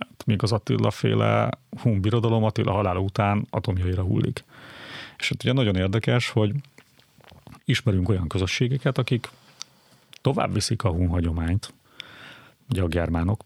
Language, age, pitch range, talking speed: Hungarian, 30-49, 95-120 Hz, 130 wpm